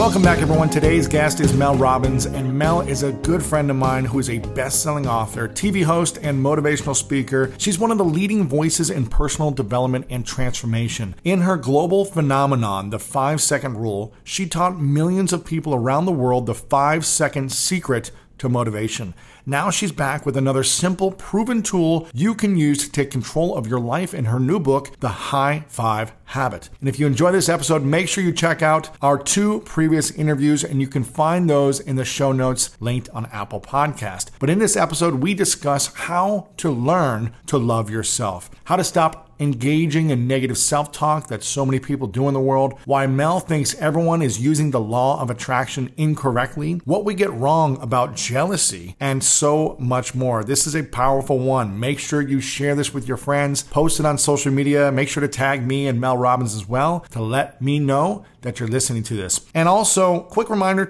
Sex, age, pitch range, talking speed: male, 40-59, 130-160 Hz, 195 wpm